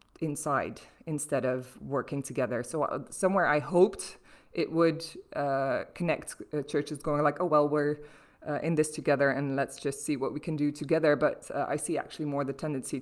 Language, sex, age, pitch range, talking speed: English, female, 20-39, 135-155 Hz, 185 wpm